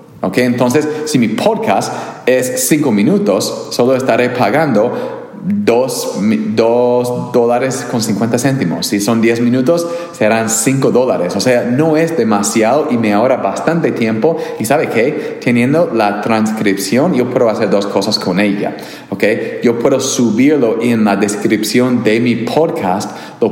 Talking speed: 145 wpm